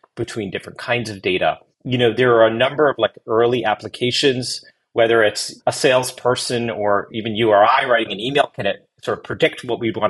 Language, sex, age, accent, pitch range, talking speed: English, male, 30-49, American, 110-135 Hz, 210 wpm